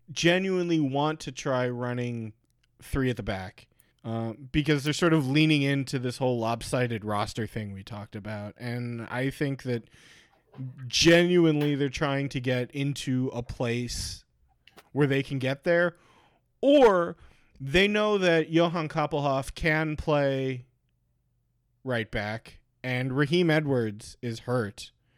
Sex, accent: male, American